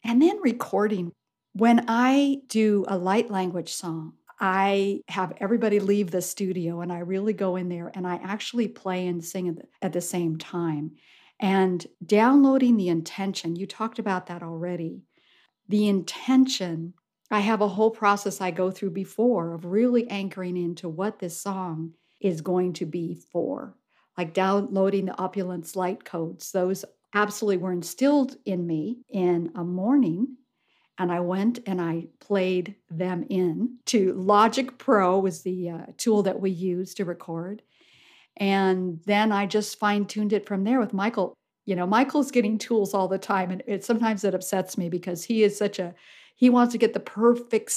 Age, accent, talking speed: 50-69, American, 170 wpm